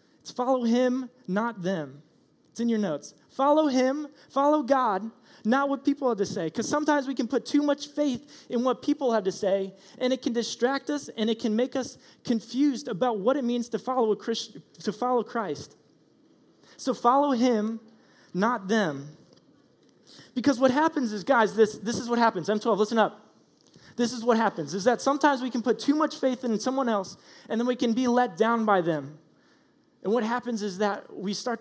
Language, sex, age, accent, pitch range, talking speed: English, male, 20-39, American, 195-250 Hz, 195 wpm